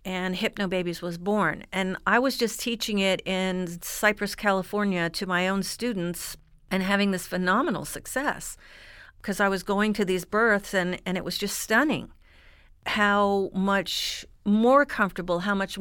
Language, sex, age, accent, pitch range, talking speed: English, female, 50-69, American, 185-220 Hz, 155 wpm